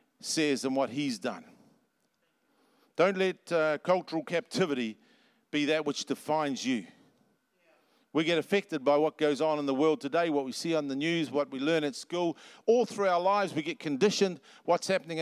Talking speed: 180 wpm